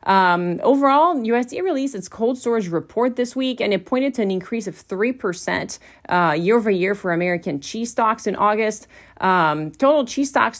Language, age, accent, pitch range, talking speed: English, 30-49, American, 175-235 Hz, 185 wpm